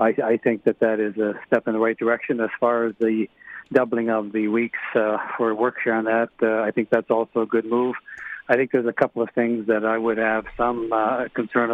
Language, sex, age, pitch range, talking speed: English, male, 50-69, 110-120 Hz, 240 wpm